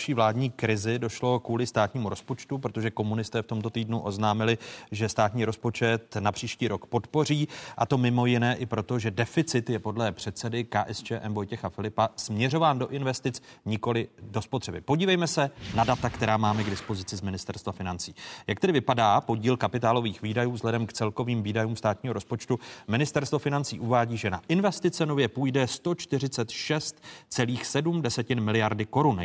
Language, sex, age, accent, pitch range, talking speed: Czech, male, 30-49, native, 105-125 Hz, 150 wpm